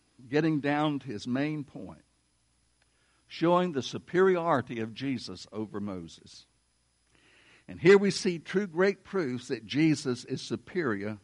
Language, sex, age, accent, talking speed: English, male, 60-79, American, 130 wpm